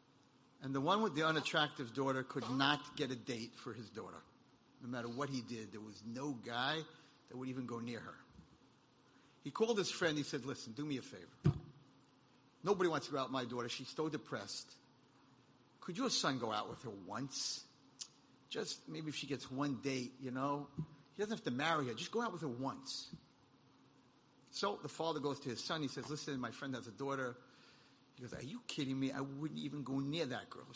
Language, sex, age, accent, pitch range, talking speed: English, male, 50-69, American, 125-150 Hz, 215 wpm